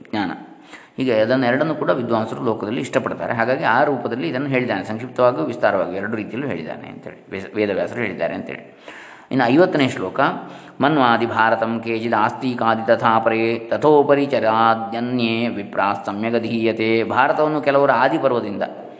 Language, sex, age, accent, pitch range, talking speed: Kannada, male, 20-39, native, 110-135 Hz, 115 wpm